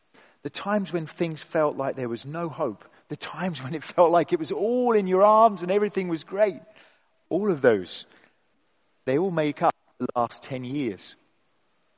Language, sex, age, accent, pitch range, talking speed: English, male, 40-59, British, 135-190 Hz, 185 wpm